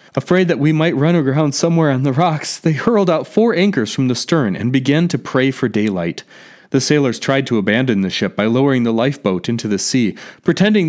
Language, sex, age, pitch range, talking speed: English, male, 30-49, 130-170 Hz, 215 wpm